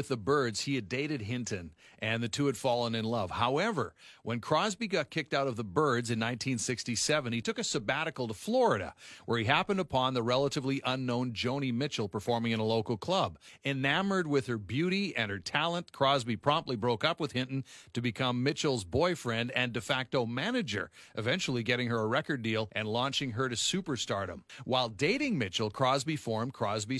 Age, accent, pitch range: 40-59, American, 120-150 Hz